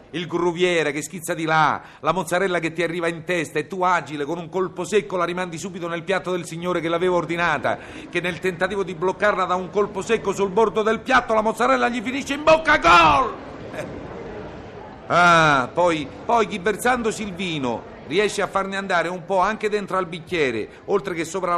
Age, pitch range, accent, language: 50-69, 160-210 Hz, native, Italian